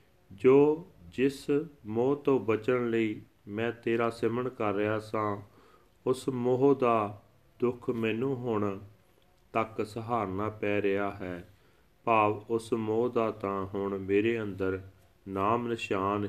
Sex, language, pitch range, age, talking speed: male, Punjabi, 95-120 Hz, 40-59, 120 wpm